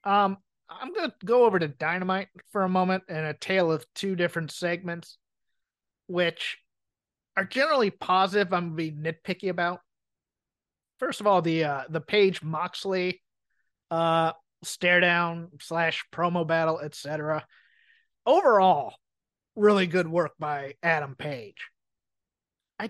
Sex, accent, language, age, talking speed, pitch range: male, American, English, 30-49, 130 wpm, 170-220 Hz